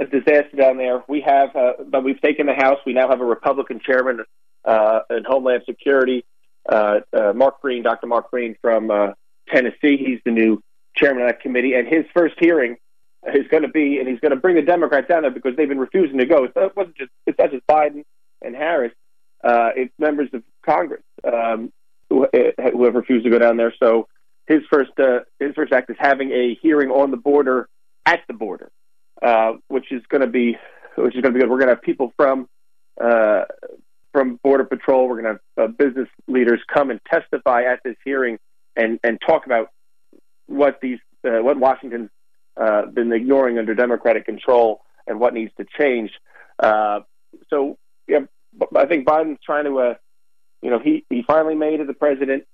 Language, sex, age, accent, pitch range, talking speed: English, male, 40-59, American, 115-140 Hz, 200 wpm